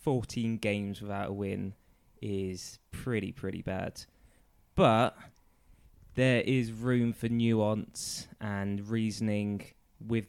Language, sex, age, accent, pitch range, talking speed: English, male, 20-39, British, 100-115 Hz, 105 wpm